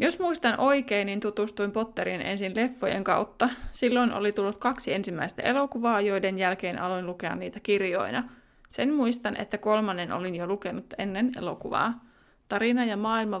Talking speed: 150 wpm